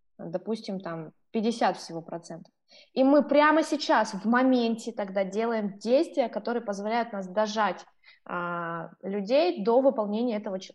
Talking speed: 125 wpm